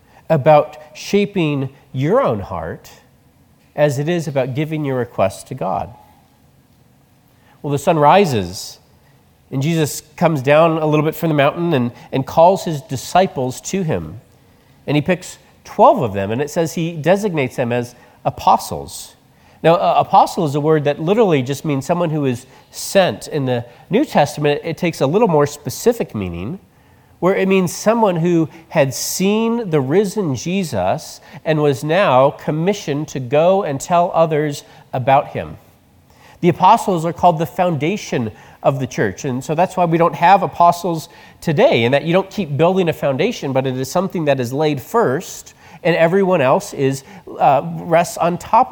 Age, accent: 40-59, American